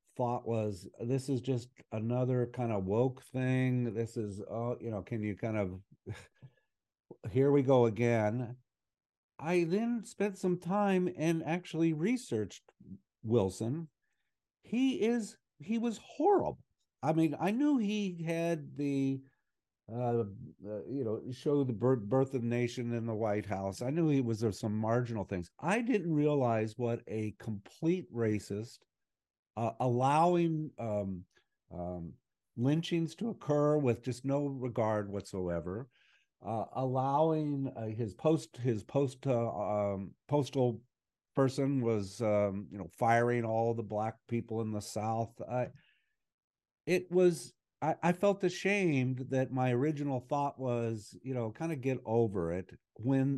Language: English